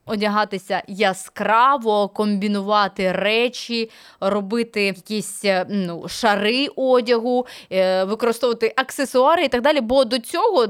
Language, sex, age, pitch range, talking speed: Ukrainian, female, 20-39, 190-240 Hz, 95 wpm